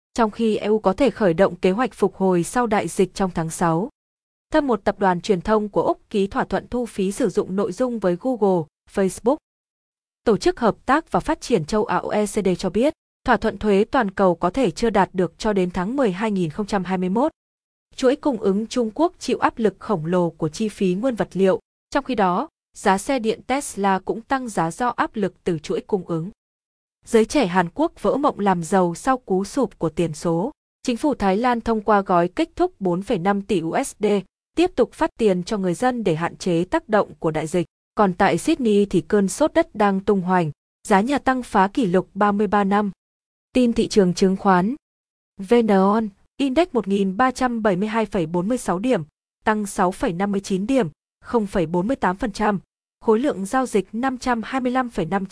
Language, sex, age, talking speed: Vietnamese, female, 20-39, 190 wpm